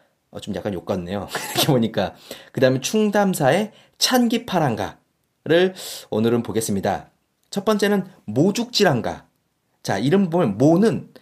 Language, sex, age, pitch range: Korean, male, 30-49, 130-210 Hz